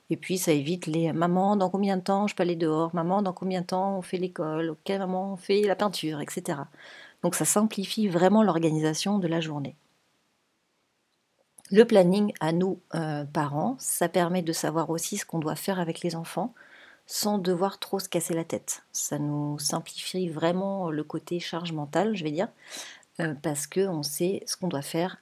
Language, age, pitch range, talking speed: French, 40-59, 155-185 Hz, 195 wpm